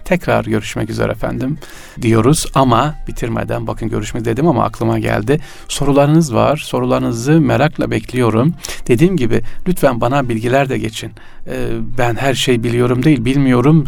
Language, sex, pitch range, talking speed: Turkish, male, 115-155 Hz, 140 wpm